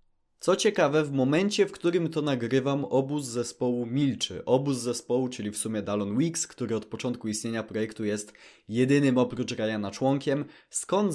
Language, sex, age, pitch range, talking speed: Polish, male, 20-39, 120-155 Hz, 155 wpm